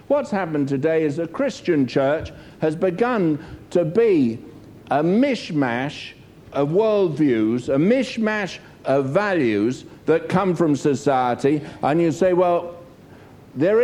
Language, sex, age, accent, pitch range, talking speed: English, male, 60-79, British, 140-235 Hz, 120 wpm